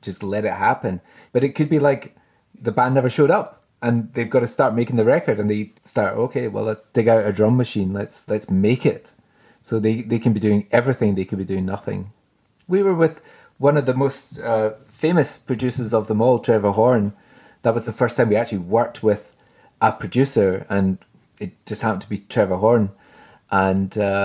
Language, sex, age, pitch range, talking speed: English, male, 30-49, 105-135 Hz, 210 wpm